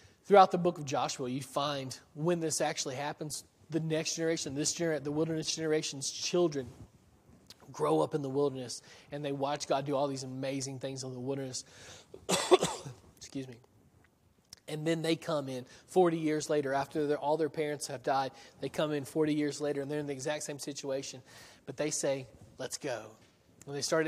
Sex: male